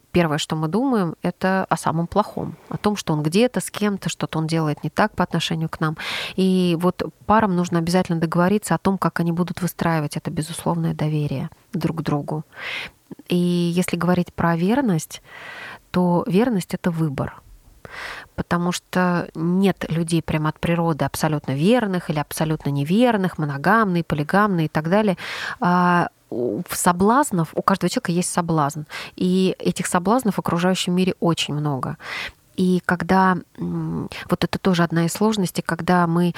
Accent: native